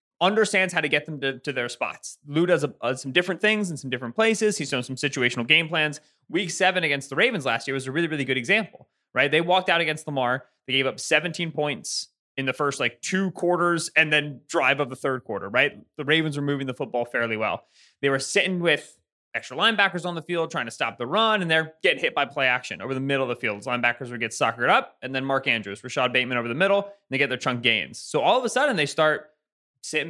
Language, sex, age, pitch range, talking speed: English, male, 20-39, 135-195 Hz, 255 wpm